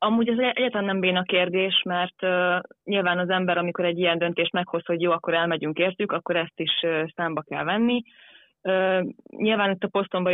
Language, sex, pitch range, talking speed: Hungarian, female, 165-185 Hz, 195 wpm